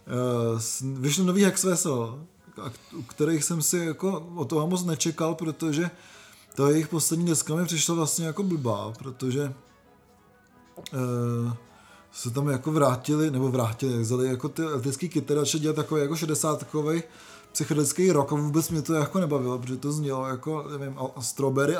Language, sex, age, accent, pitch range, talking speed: Czech, male, 20-39, native, 135-160 Hz, 150 wpm